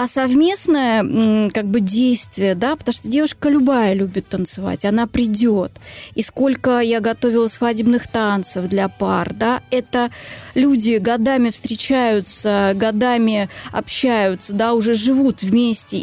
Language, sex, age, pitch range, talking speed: Russian, female, 20-39, 215-255 Hz, 125 wpm